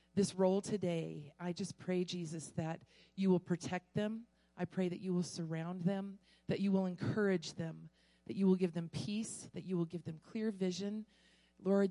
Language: English